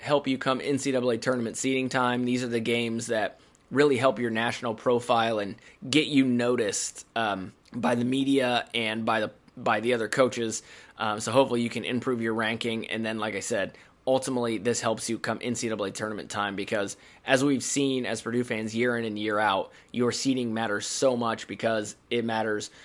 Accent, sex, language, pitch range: American, male, English, 110-130 Hz